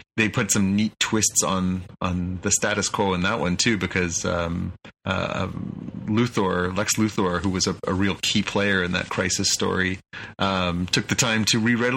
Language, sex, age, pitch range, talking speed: English, male, 30-49, 95-110 Hz, 185 wpm